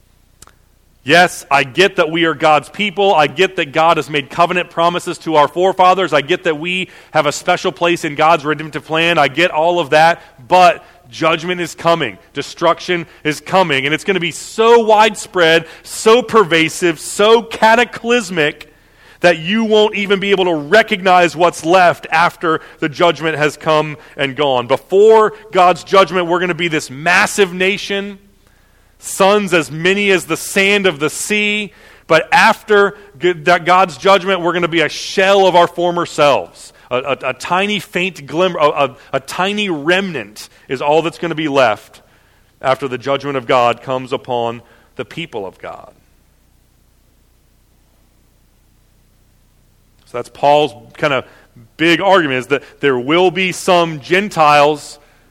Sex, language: male, English